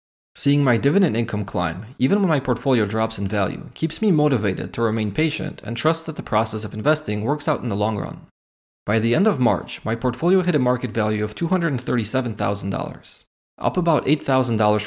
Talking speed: 190 wpm